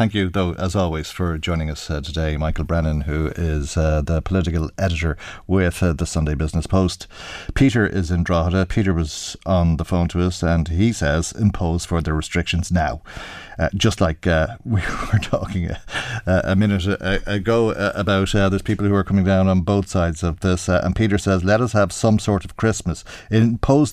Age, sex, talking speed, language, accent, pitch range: 40-59, male, 195 wpm, English, Irish, 85-100 Hz